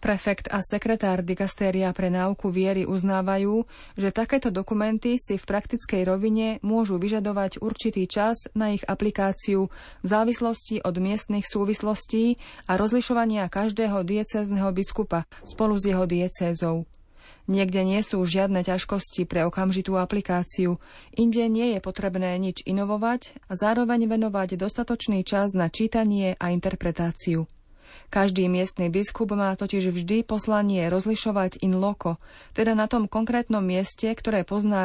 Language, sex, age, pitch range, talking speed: Slovak, female, 30-49, 185-220 Hz, 130 wpm